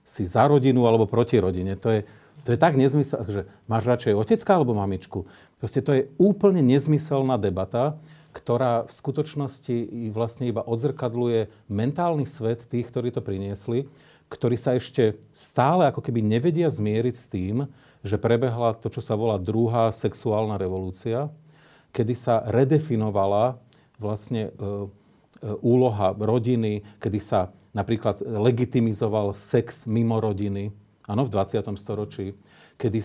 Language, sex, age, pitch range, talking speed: Slovak, male, 40-59, 105-135 Hz, 135 wpm